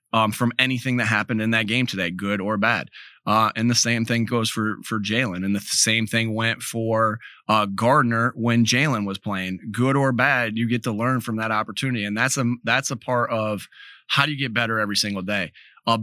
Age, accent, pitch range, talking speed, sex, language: 30-49, American, 105-125 Hz, 220 wpm, male, English